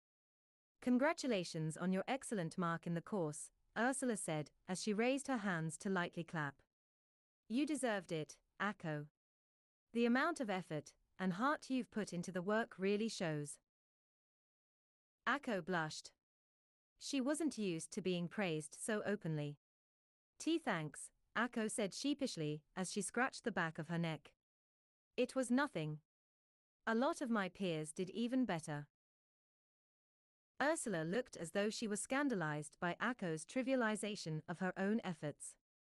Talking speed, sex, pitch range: 135 wpm, female, 160-235 Hz